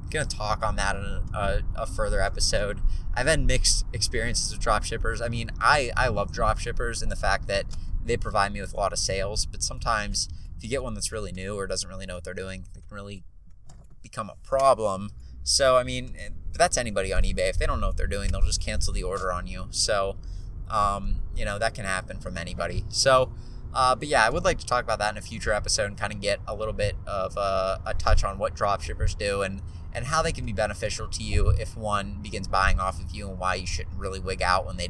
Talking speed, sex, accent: 250 wpm, male, American